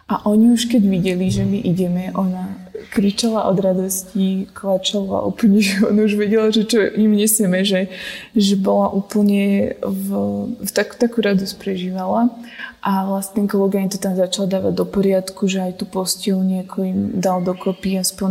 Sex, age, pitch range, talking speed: female, 20-39, 190-210 Hz, 165 wpm